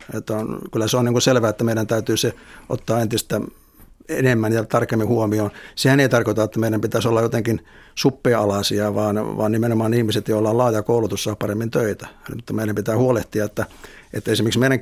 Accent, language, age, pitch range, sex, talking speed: native, Finnish, 60-79, 110-120 Hz, male, 180 wpm